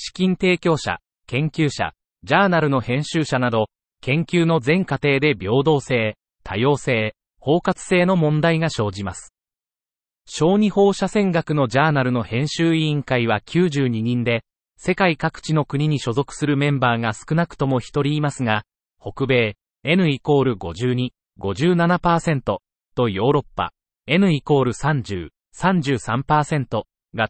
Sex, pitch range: male, 115-165 Hz